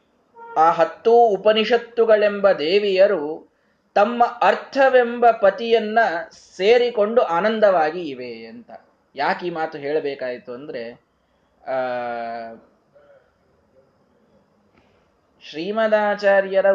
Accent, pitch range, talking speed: native, 150-225 Hz, 65 wpm